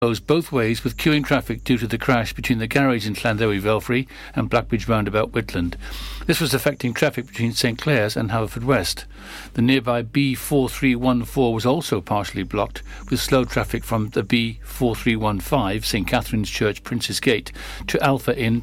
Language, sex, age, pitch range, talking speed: English, male, 60-79, 115-140 Hz, 160 wpm